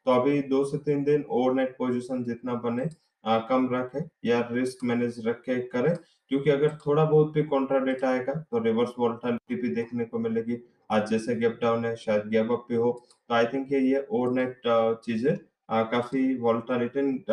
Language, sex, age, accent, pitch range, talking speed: English, male, 20-39, Indian, 115-130 Hz, 170 wpm